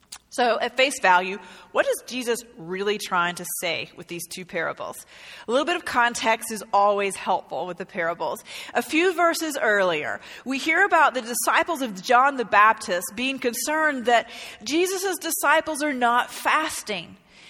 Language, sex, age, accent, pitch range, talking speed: English, female, 40-59, American, 205-290 Hz, 160 wpm